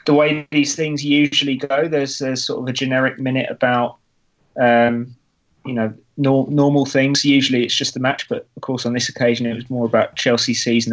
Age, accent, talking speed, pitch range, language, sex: 20-39, British, 210 wpm, 120-140 Hz, English, male